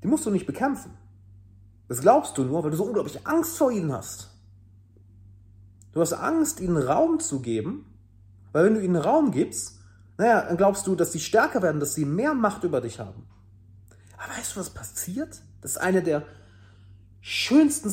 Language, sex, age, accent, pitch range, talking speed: German, male, 40-59, German, 95-155 Hz, 185 wpm